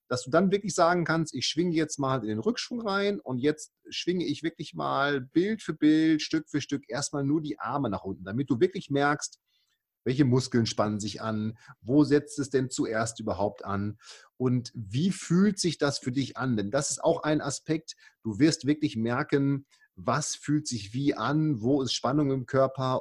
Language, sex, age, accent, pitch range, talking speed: German, male, 40-59, German, 130-165 Hz, 200 wpm